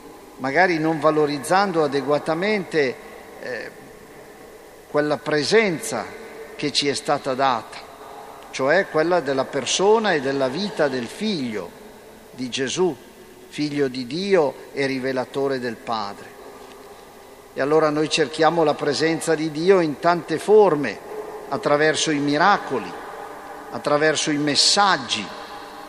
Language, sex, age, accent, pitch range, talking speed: Italian, male, 50-69, native, 140-185 Hz, 105 wpm